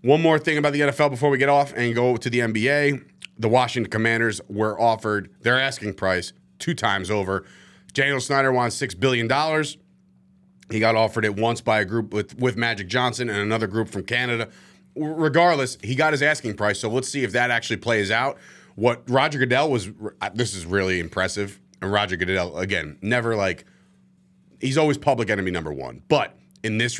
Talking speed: 185 wpm